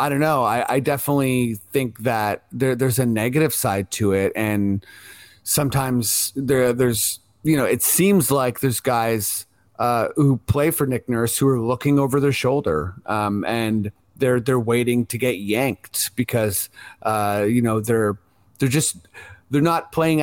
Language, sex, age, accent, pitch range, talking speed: English, male, 30-49, American, 110-140 Hz, 165 wpm